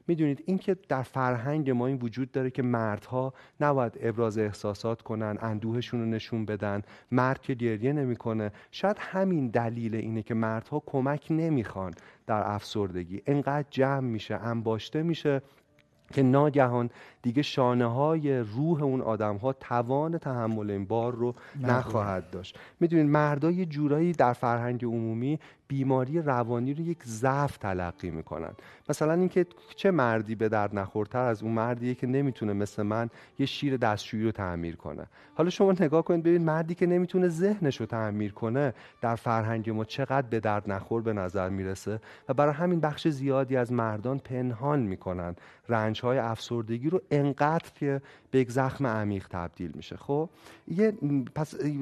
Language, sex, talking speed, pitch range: Persian, male, 150 wpm, 110-145 Hz